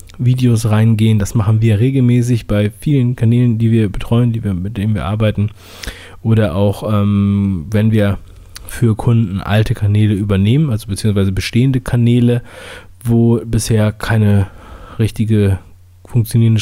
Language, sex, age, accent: German, male, 20-39, German